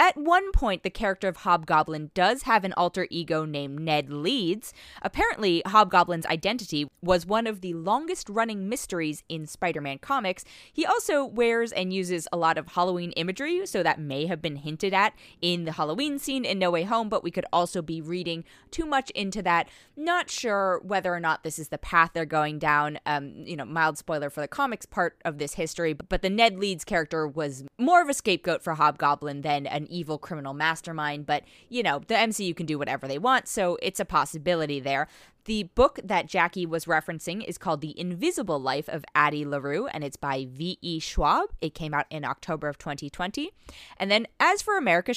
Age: 20-39